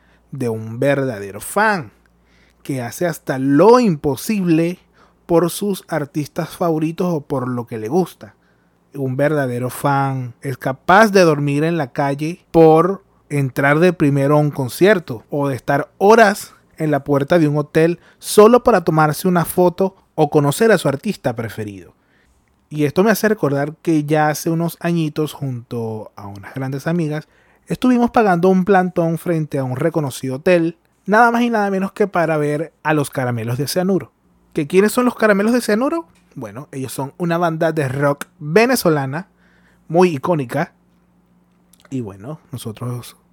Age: 30-49